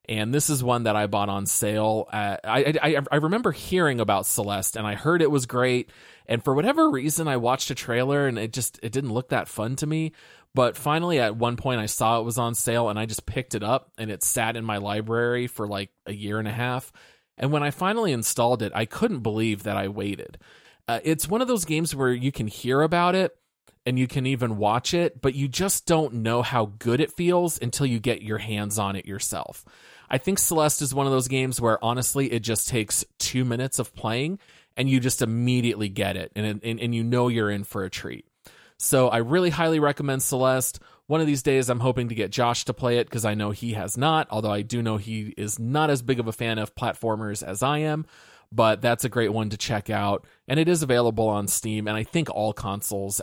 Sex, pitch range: male, 110-135 Hz